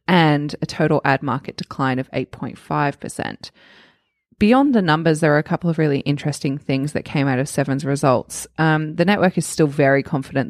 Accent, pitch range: Australian, 135-165 Hz